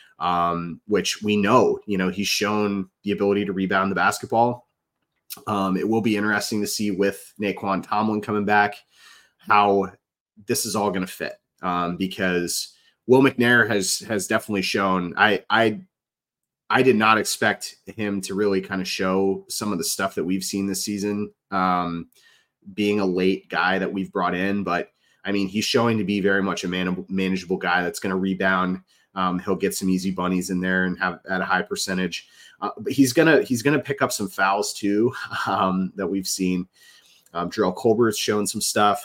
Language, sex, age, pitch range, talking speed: English, male, 30-49, 95-105 Hz, 190 wpm